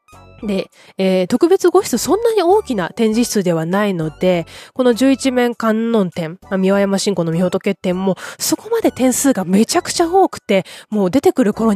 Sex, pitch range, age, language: female, 185-285 Hz, 20-39, Japanese